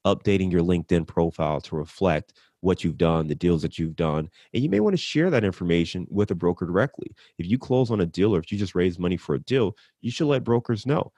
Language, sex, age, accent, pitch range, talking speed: English, male, 30-49, American, 90-115 Hz, 245 wpm